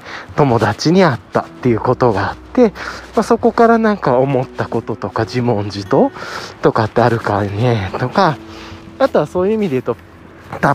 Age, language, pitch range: 20-39, Japanese, 115-190 Hz